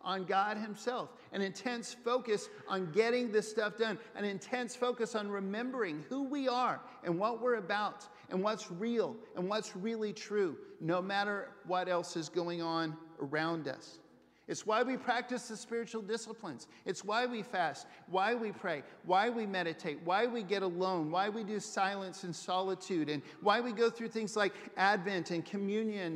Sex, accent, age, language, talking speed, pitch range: male, American, 50-69, English, 175 wpm, 185-230 Hz